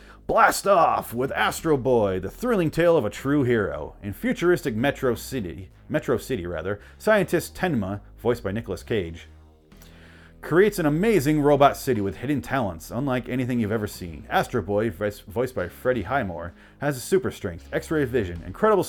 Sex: male